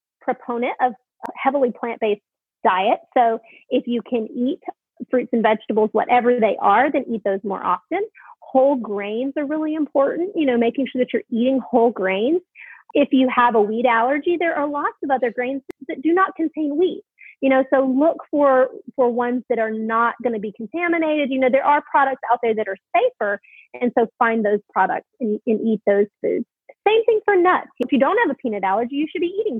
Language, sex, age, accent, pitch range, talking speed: English, female, 30-49, American, 225-300 Hz, 205 wpm